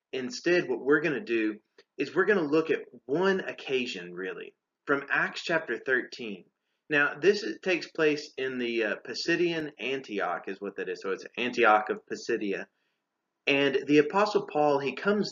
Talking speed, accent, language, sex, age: 170 wpm, American, English, male, 30-49